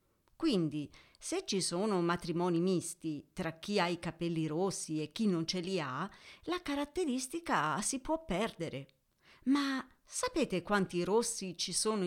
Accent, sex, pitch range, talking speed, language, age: native, female, 170-235 Hz, 145 wpm, Italian, 50-69